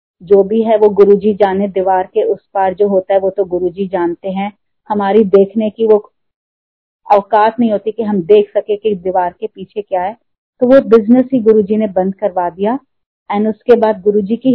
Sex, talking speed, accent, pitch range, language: female, 200 wpm, native, 200-230 Hz, Hindi